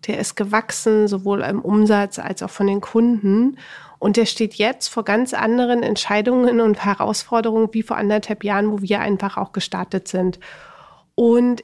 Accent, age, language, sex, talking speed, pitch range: German, 40-59, German, female, 165 wpm, 200-245 Hz